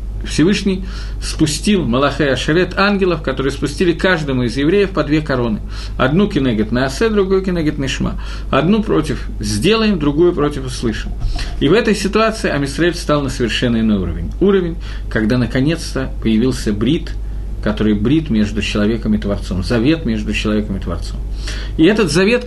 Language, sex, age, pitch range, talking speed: Russian, male, 40-59, 110-160 Hz, 150 wpm